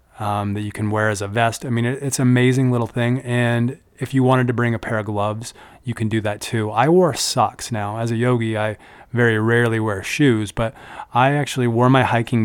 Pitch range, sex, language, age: 105-120 Hz, male, English, 30-49